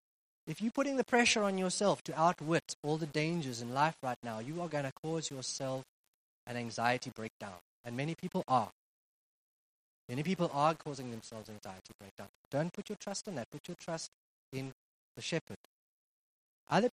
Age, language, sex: 30-49, English, male